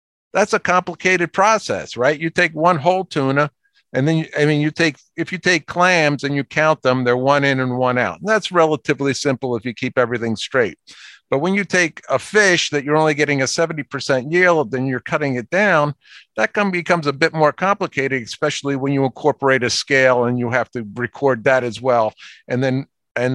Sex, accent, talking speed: male, American, 215 wpm